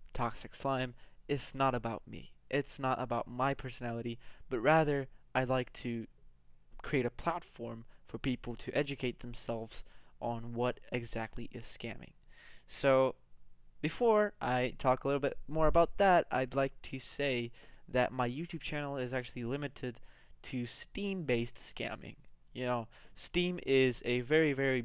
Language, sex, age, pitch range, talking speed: English, male, 20-39, 120-140 Hz, 145 wpm